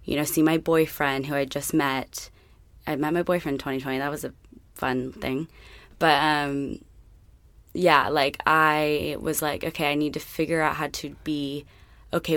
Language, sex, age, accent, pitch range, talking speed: English, female, 20-39, American, 135-155 Hz, 180 wpm